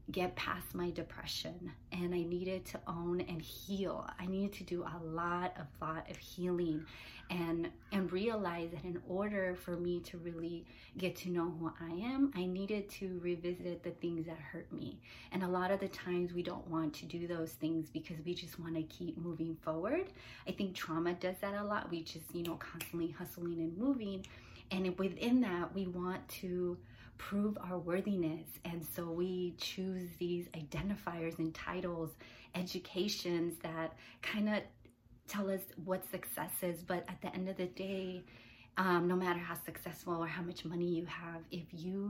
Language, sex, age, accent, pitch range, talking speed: English, female, 30-49, American, 165-185 Hz, 180 wpm